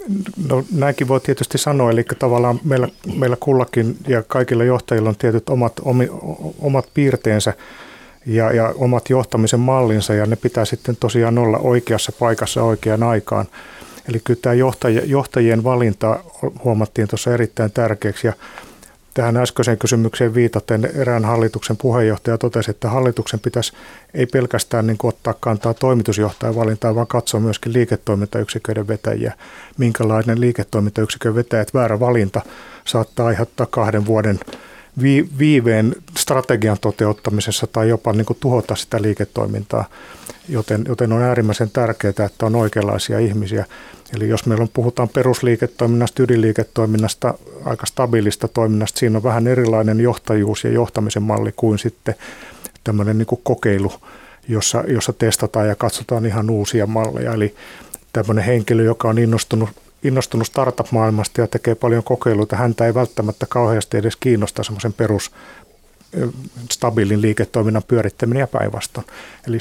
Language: Finnish